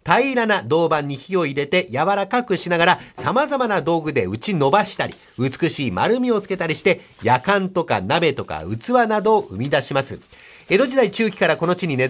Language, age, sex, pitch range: Japanese, 50-69, male, 150-210 Hz